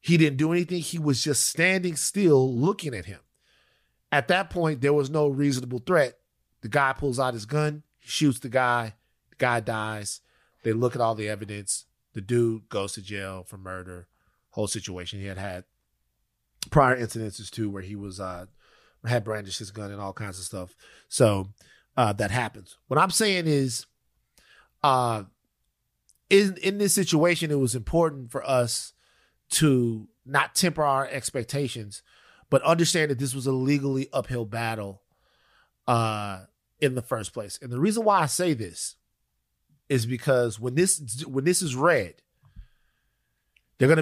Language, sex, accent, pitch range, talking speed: English, male, American, 110-150 Hz, 165 wpm